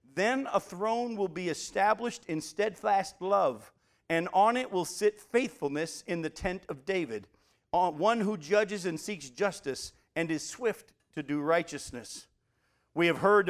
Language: English